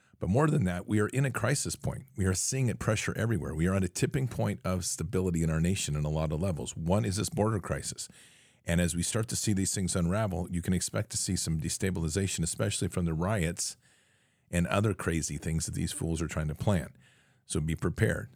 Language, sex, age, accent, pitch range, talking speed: English, male, 50-69, American, 80-100 Hz, 230 wpm